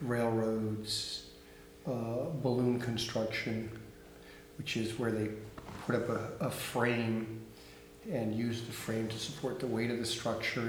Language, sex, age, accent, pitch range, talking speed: English, male, 50-69, American, 110-125 Hz, 135 wpm